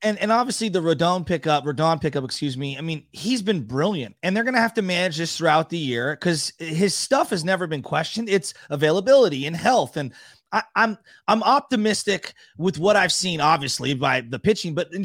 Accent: American